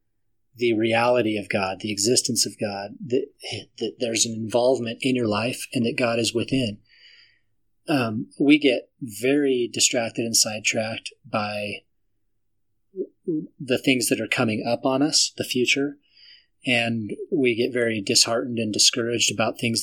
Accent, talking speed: American, 145 wpm